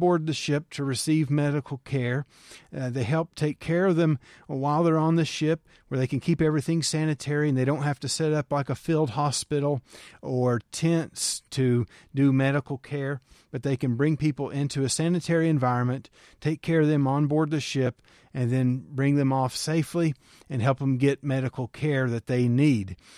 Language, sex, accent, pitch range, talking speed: English, male, American, 130-155 Hz, 190 wpm